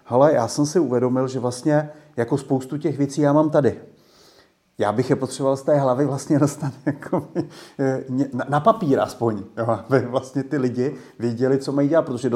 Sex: male